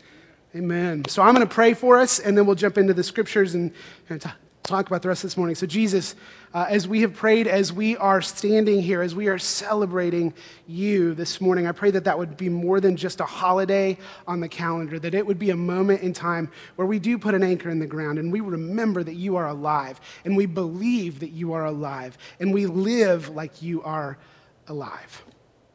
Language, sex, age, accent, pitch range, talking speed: English, male, 30-49, American, 145-185 Hz, 225 wpm